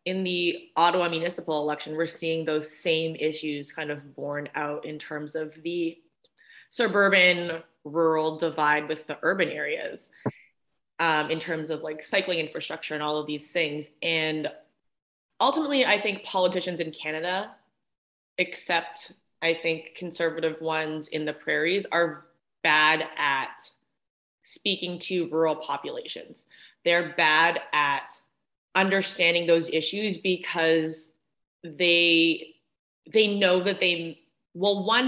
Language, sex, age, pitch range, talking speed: English, female, 20-39, 155-185 Hz, 125 wpm